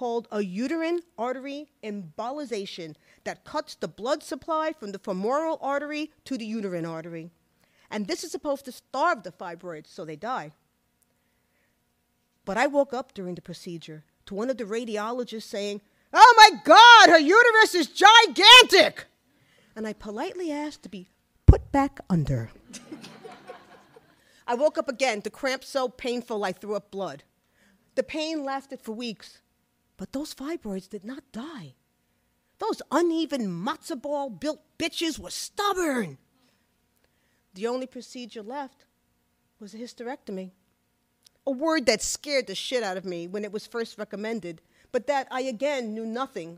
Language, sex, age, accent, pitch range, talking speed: English, female, 40-59, American, 175-285 Hz, 150 wpm